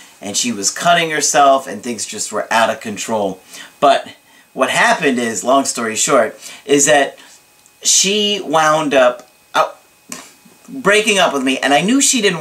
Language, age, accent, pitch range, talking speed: English, 40-59, American, 125-175 Hz, 165 wpm